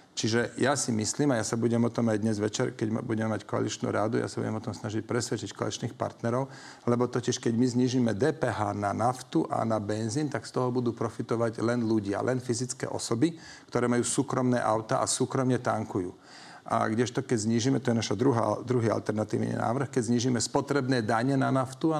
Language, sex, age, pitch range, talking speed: Slovak, male, 40-59, 115-130 Hz, 195 wpm